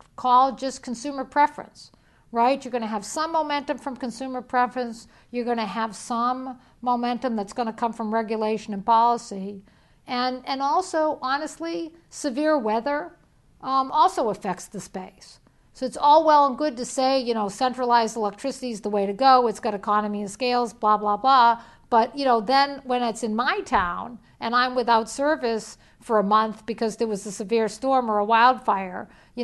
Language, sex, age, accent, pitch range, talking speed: English, female, 50-69, American, 220-265 Hz, 185 wpm